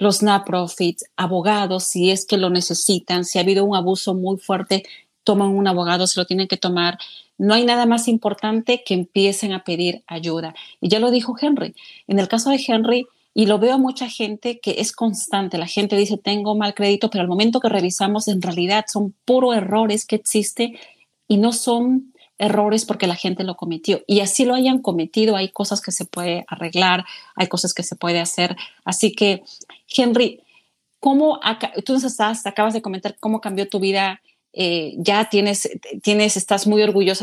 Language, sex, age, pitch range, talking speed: Spanish, female, 40-59, 185-215 Hz, 190 wpm